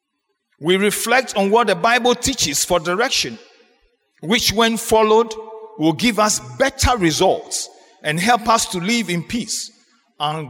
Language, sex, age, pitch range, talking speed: English, male, 50-69, 165-235 Hz, 145 wpm